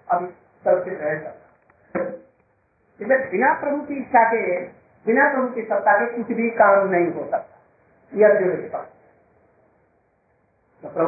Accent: native